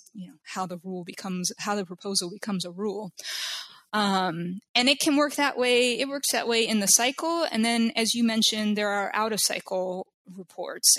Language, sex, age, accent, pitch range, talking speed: English, female, 20-39, American, 190-225 Hz, 200 wpm